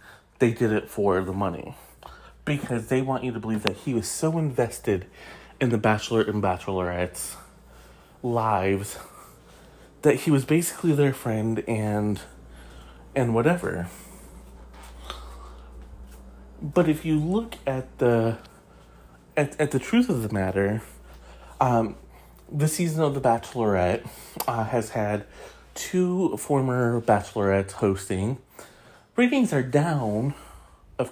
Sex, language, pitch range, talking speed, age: male, English, 95-145 Hz, 120 wpm, 30-49